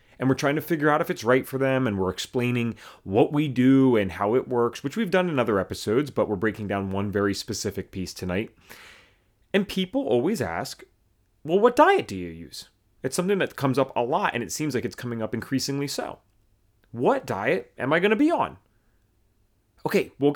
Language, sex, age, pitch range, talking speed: English, male, 30-49, 105-170 Hz, 210 wpm